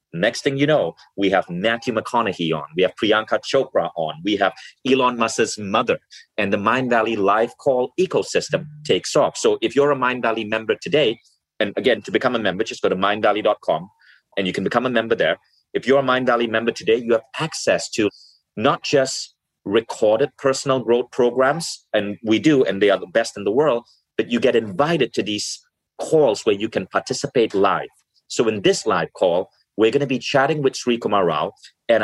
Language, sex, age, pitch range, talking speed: English, male, 30-49, 110-145 Hz, 200 wpm